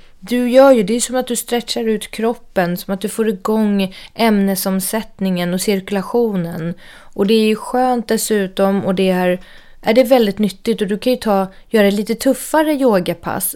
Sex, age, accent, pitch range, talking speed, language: female, 30-49, Swedish, 180-225 Hz, 180 wpm, English